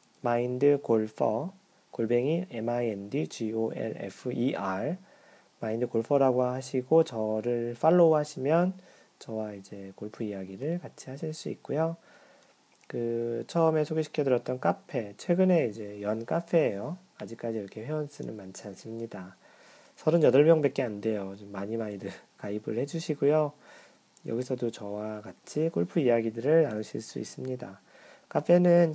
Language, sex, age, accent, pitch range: Korean, male, 40-59, native, 115-160 Hz